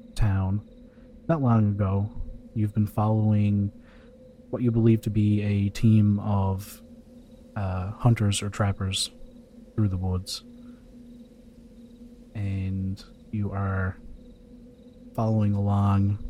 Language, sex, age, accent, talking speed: English, male, 30-49, American, 100 wpm